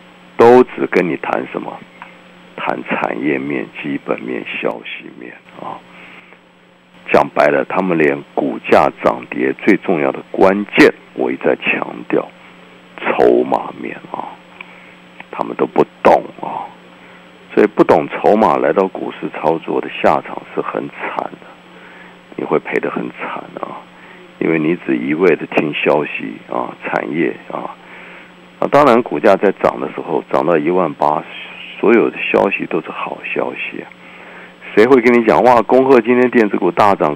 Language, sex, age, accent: Chinese, male, 60-79, native